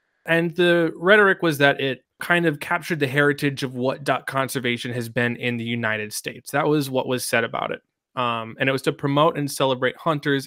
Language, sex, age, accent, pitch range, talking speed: English, male, 20-39, American, 125-155 Hz, 210 wpm